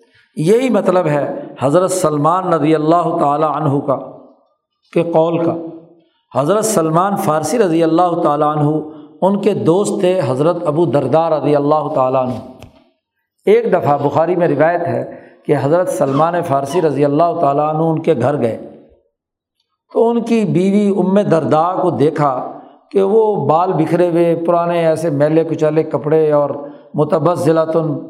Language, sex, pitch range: Urdu, male, 150-185 Hz